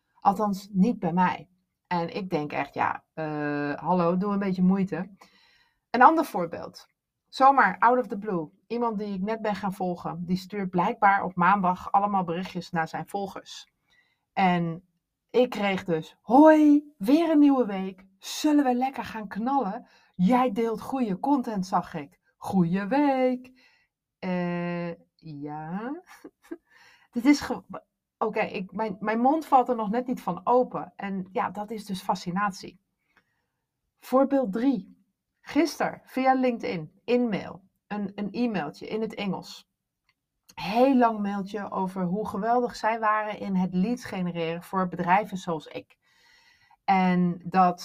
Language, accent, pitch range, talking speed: Dutch, Dutch, 175-230 Hz, 145 wpm